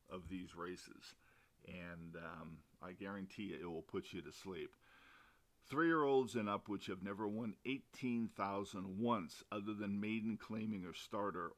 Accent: American